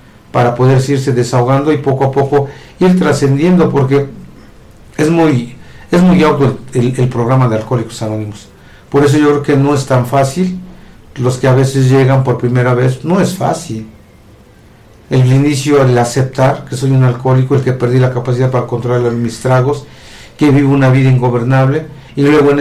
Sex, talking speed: male, 180 wpm